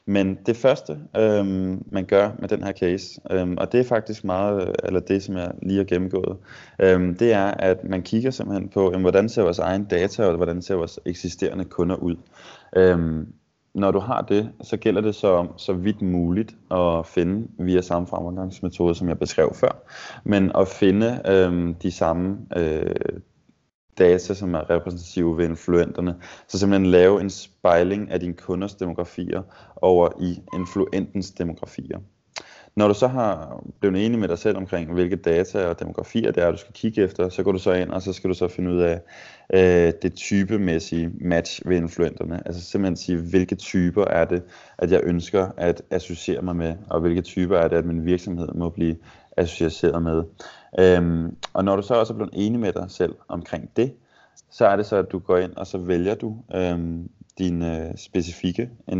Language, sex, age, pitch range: Danish, male, 20-39, 85-100 Hz